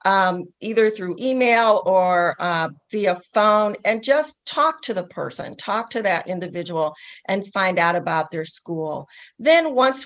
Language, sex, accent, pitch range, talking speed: English, female, American, 180-230 Hz, 155 wpm